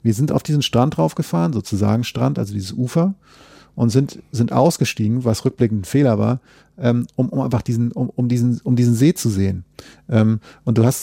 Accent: German